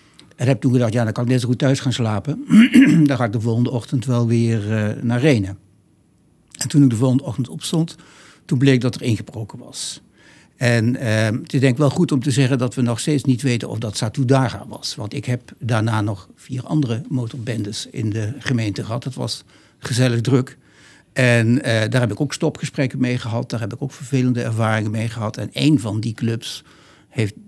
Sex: male